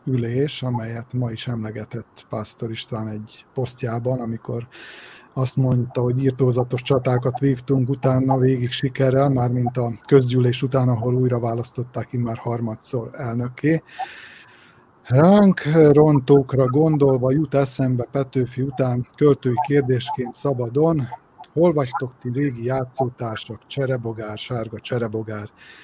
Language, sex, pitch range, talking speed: Hungarian, male, 120-140 Hz, 110 wpm